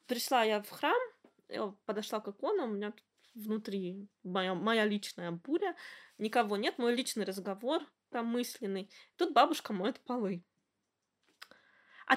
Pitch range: 225-310 Hz